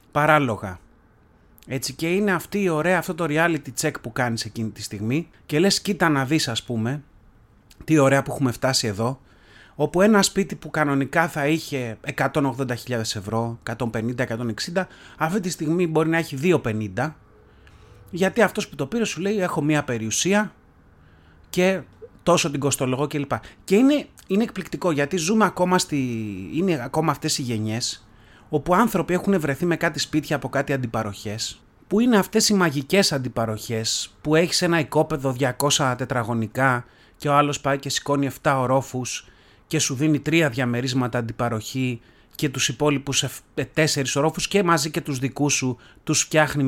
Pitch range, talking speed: 120-165 Hz, 160 wpm